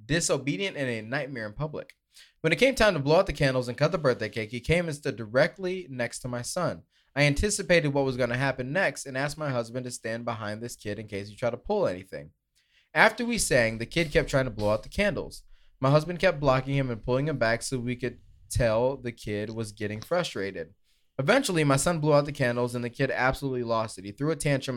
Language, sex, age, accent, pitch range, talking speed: English, male, 20-39, American, 115-150 Hz, 240 wpm